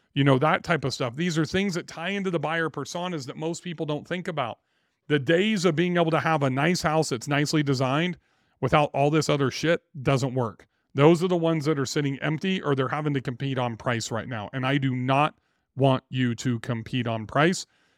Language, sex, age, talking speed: English, male, 40-59, 225 wpm